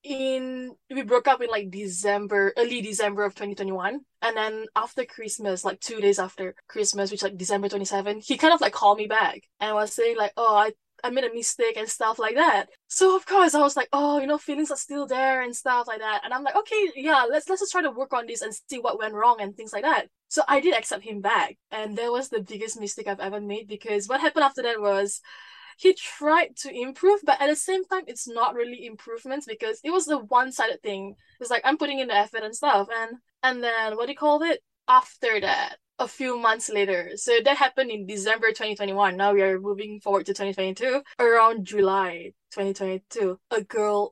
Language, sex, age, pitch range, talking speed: English, female, 10-29, 205-270 Hz, 225 wpm